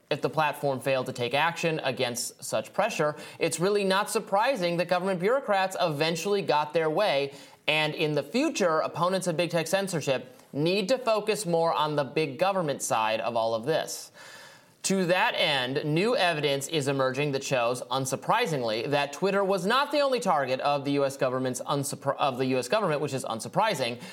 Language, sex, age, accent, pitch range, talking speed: English, male, 30-49, American, 140-190 Hz, 180 wpm